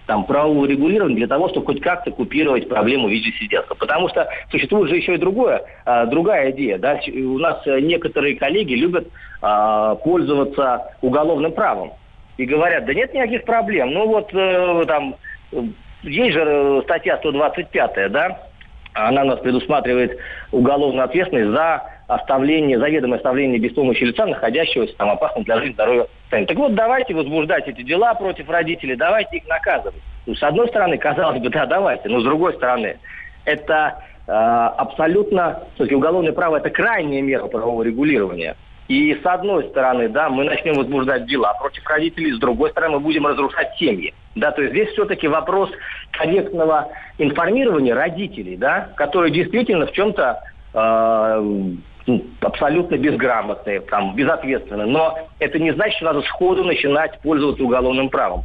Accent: native